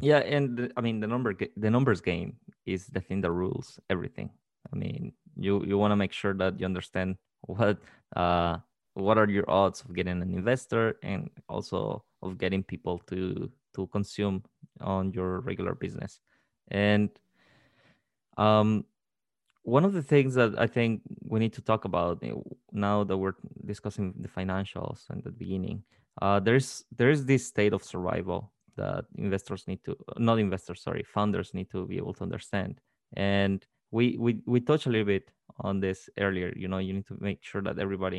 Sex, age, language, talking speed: male, 20-39, English, 175 wpm